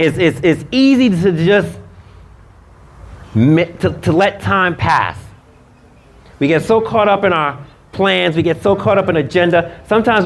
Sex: male